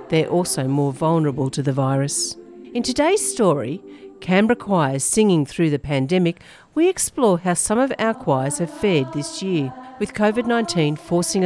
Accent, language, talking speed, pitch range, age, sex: Australian, English, 155 wpm, 145-205 Hz, 50-69, female